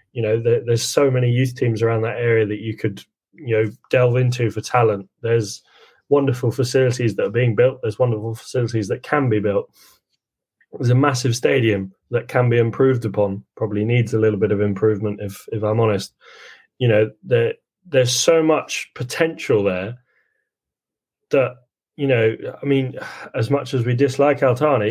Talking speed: 175 wpm